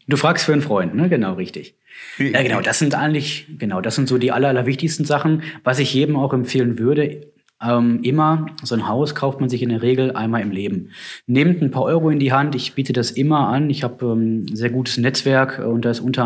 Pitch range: 120-150 Hz